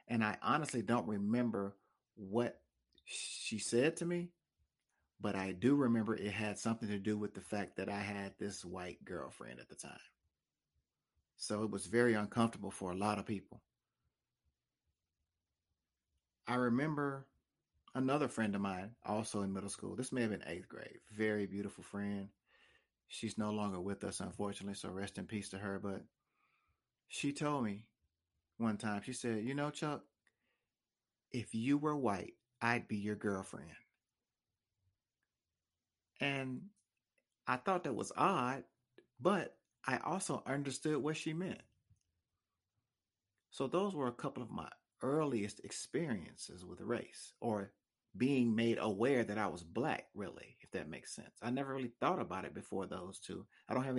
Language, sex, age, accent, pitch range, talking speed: English, male, 40-59, American, 100-120 Hz, 155 wpm